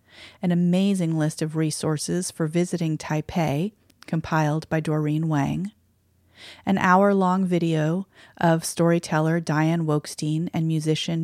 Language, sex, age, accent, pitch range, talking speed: English, female, 30-49, American, 155-180 Hz, 110 wpm